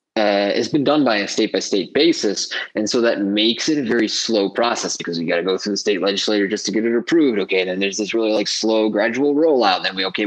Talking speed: 265 wpm